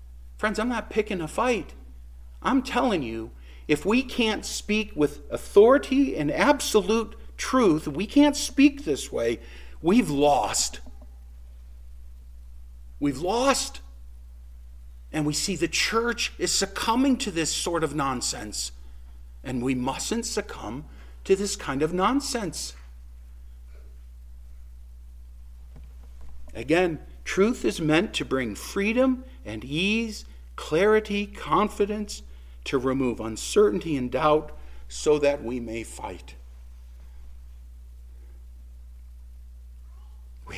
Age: 50-69